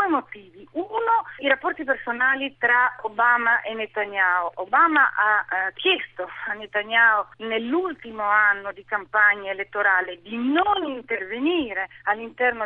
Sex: female